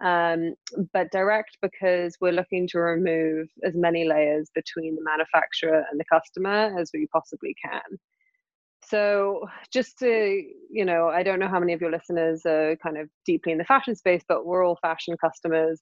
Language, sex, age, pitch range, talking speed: English, female, 20-39, 160-190 Hz, 180 wpm